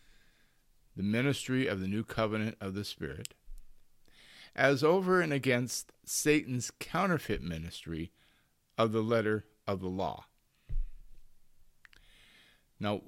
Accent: American